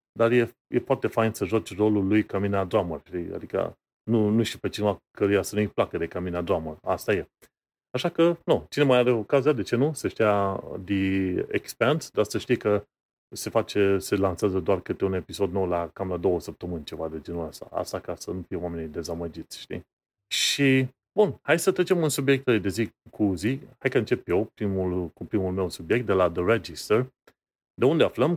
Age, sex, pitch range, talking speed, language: 30-49, male, 95-125 Hz, 205 wpm, Romanian